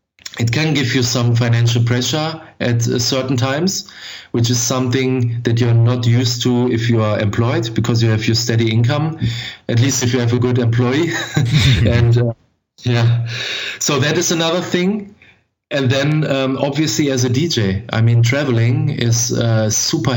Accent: German